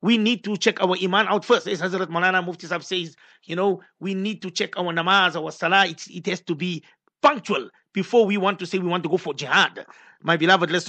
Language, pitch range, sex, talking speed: English, 195-295 Hz, male, 225 wpm